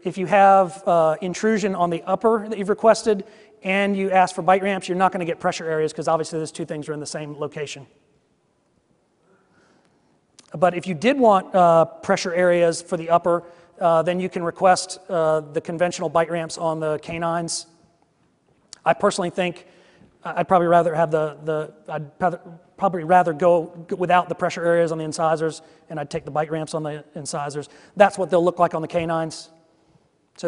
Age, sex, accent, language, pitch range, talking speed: 40-59, male, American, English, 160-190 Hz, 185 wpm